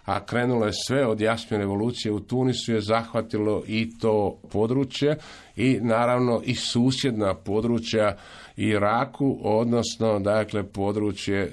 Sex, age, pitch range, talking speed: male, 50-69, 100-120 Hz, 120 wpm